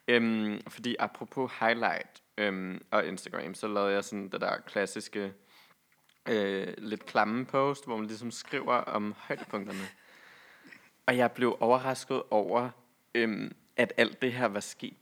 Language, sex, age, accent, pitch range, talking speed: Danish, male, 20-39, native, 100-115 Hz, 140 wpm